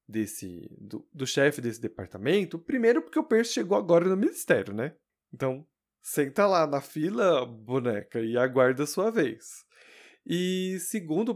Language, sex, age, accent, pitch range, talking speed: Portuguese, male, 20-39, Brazilian, 135-205 Hz, 150 wpm